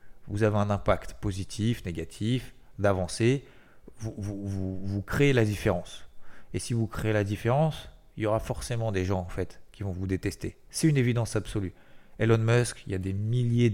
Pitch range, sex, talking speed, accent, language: 100-130 Hz, male, 190 wpm, French, French